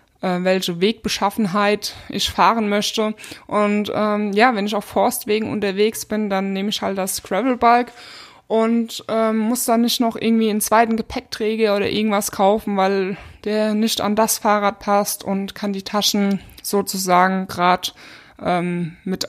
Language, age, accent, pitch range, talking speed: German, 20-39, German, 180-215 Hz, 150 wpm